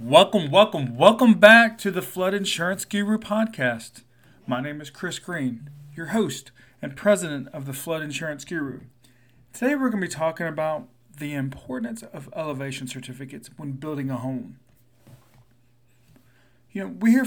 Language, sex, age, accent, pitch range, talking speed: English, male, 40-59, American, 125-165 Hz, 155 wpm